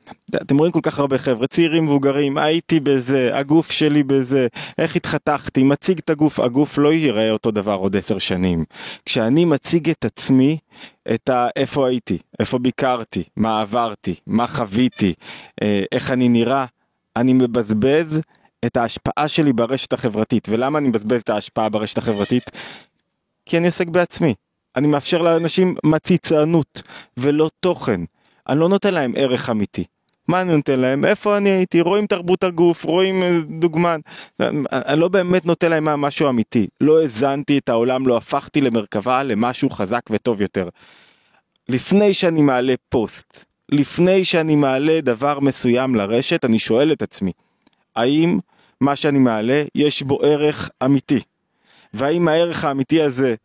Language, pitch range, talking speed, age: Hebrew, 120-160 Hz, 145 wpm, 20-39